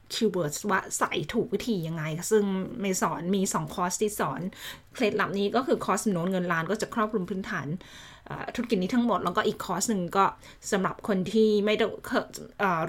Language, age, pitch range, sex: Thai, 20-39, 185-225 Hz, female